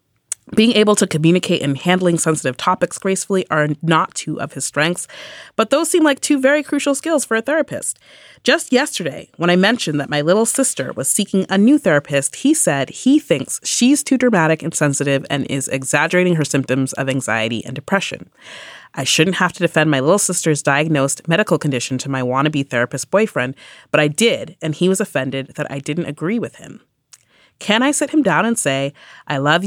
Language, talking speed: English, 195 wpm